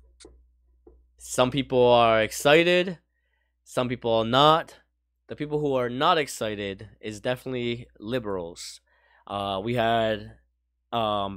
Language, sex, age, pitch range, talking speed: English, male, 20-39, 95-125 Hz, 110 wpm